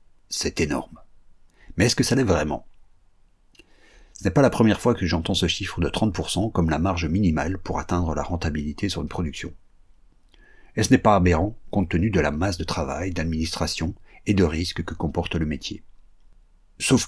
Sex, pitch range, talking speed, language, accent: male, 80-105 Hz, 185 wpm, French, French